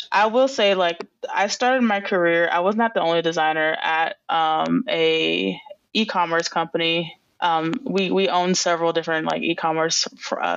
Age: 20-39